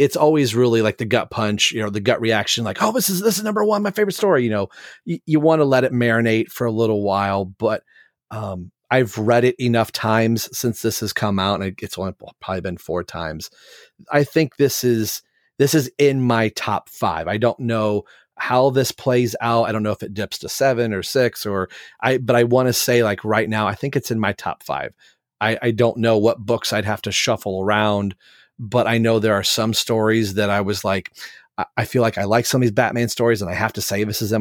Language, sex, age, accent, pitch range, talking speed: English, male, 30-49, American, 105-120 Hz, 240 wpm